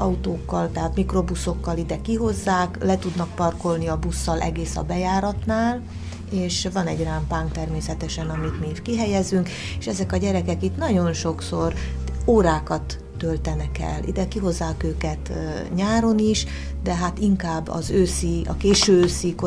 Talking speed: 140 wpm